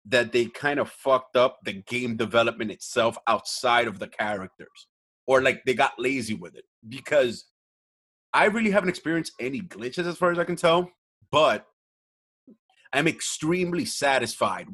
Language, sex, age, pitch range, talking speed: English, male, 30-49, 120-175 Hz, 155 wpm